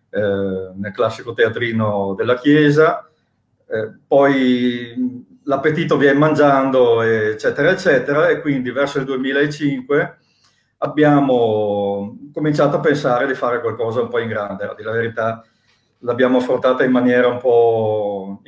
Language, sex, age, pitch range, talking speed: Italian, male, 40-59, 110-145 Hz, 115 wpm